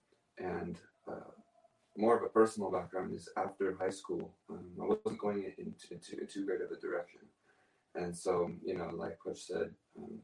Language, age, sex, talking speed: English, 20-39, male, 175 wpm